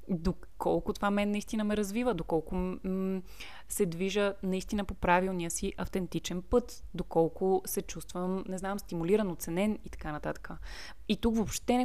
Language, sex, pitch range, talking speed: Bulgarian, female, 175-205 Hz, 155 wpm